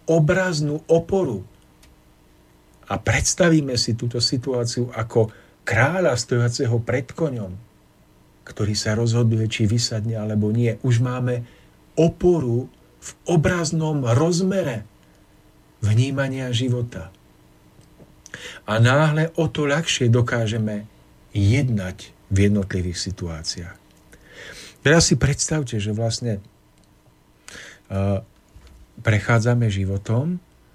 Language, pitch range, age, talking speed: Slovak, 95-130 Hz, 50-69, 90 wpm